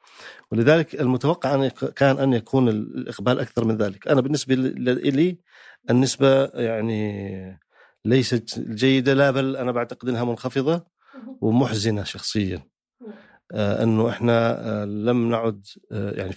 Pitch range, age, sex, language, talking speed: 100-125 Hz, 40-59, male, Arabic, 110 wpm